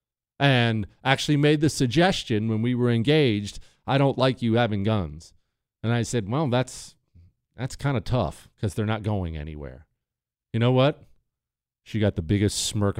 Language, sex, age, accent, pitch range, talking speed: English, male, 40-59, American, 105-135 Hz, 170 wpm